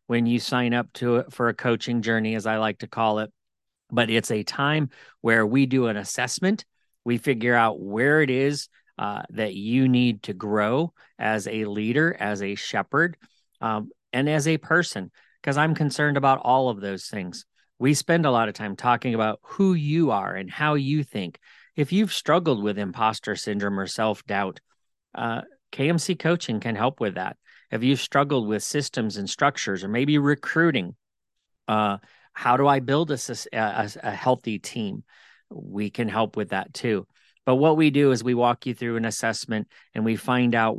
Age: 40-59